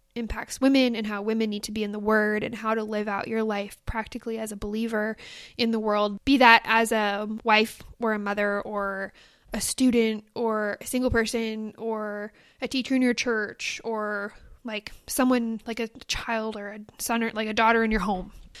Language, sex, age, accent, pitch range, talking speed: English, female, 10-29, American, 210-235 Hz, 200 wpm